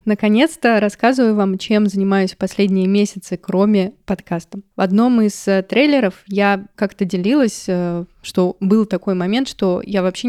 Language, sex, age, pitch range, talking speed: Russian, female, 20-39, 190-220 Hz, 135 wpm